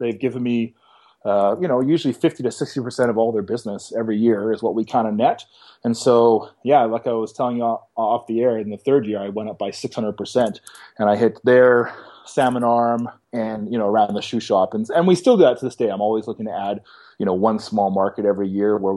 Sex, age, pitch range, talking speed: male, 30-49, 110-125 Hz, 245 wpm